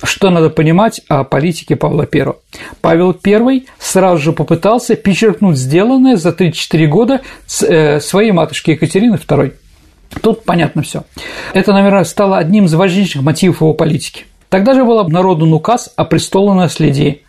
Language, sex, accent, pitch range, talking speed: Russian, male, native, 155-200 Hz, 140 wpm